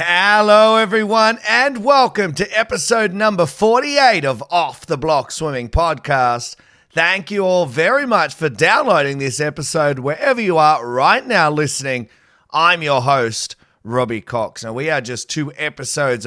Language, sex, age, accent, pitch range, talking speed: English, male, 30-49, Australian, 120-165 Hz, 150 wpm